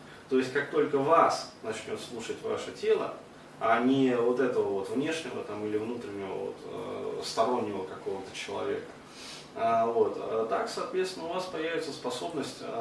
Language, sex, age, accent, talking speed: Russian, male, 30-49, native, 135 wpm